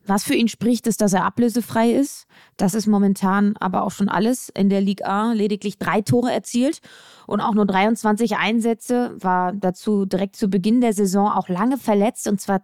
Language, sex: German, female